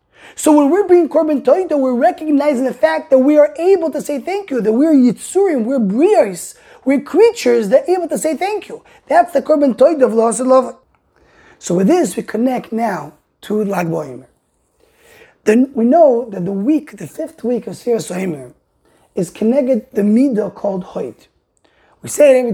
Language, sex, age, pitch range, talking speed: English, male, 20-39, 205-290 Hz, 185 wpm